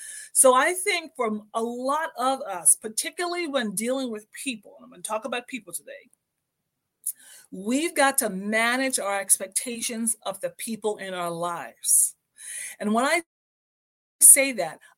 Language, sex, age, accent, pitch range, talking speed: English, female, 30-49, American, 210-270 Hz, 150 wpm